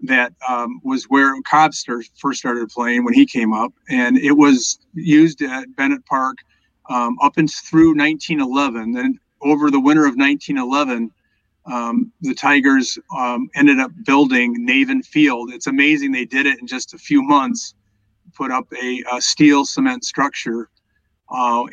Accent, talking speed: American, 155 wpm